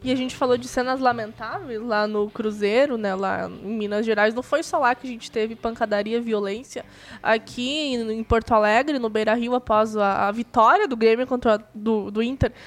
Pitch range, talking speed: 220-255 Hz, 205 wpm